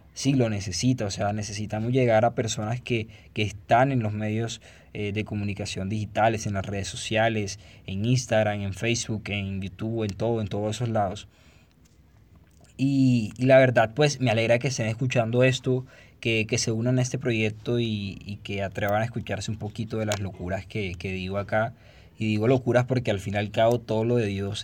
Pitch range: 100-120 Hz